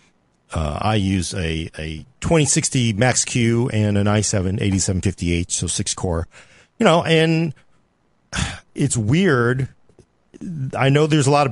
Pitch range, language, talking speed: 105-140 Hz, English, 120 wpm